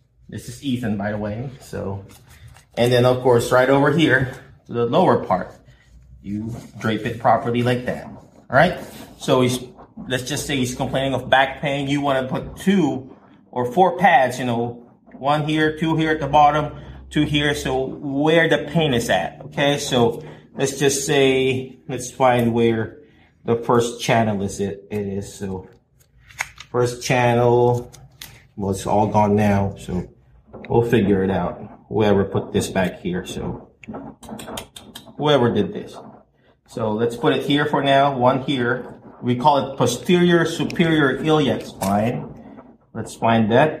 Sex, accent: male, American